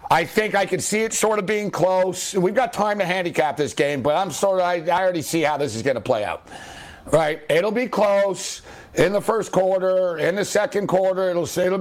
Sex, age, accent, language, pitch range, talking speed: male, 60-79, American, English, 160-200 Hz, 230 wpm